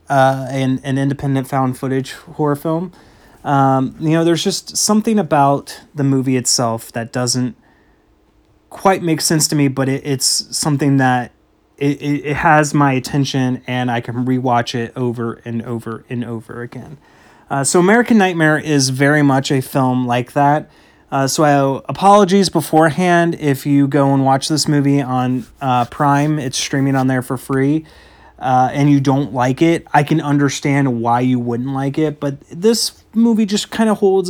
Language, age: English, 30-49